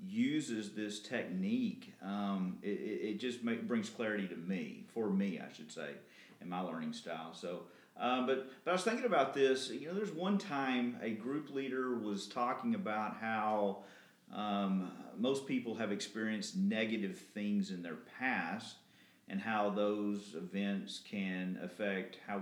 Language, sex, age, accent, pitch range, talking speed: English, male, 40-59, American, 105-175 Hz, 160 wpm